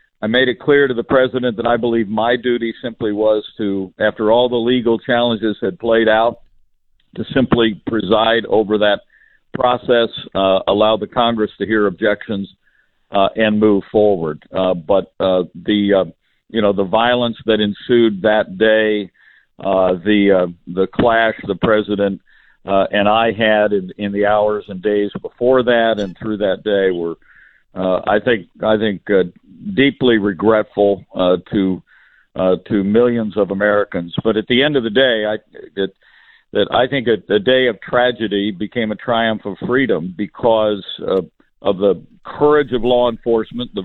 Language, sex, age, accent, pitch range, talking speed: English, male, 50-69, American, 100-120 Hz, 170 wpm